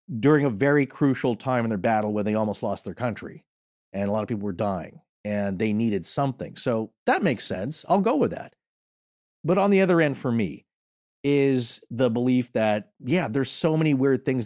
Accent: American